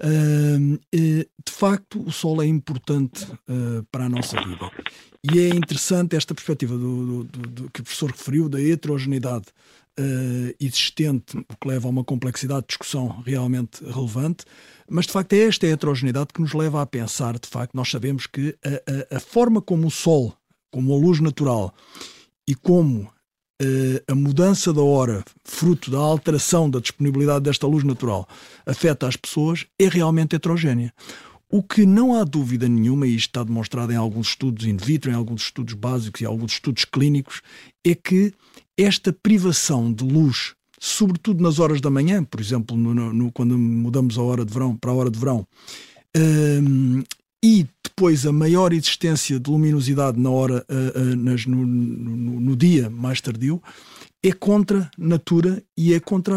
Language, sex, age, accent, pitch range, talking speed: Portuguese, male, 50-69, Portuguese, 125-170 Hz, 160 wpm